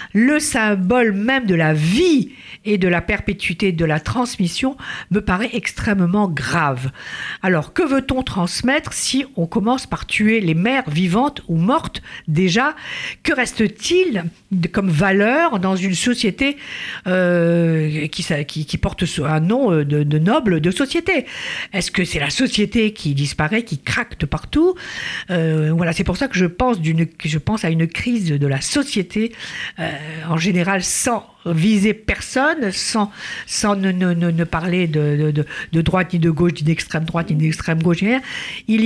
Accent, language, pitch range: French, French, 165-235 Hz